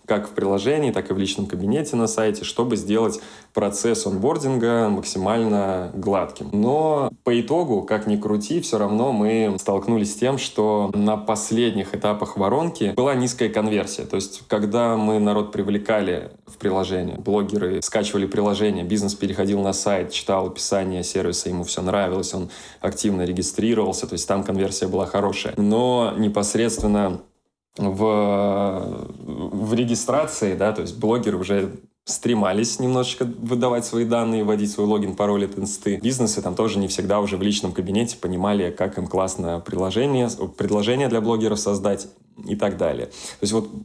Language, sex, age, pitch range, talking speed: Russian, male, 20-39, 100-115 Hz, 150 wpm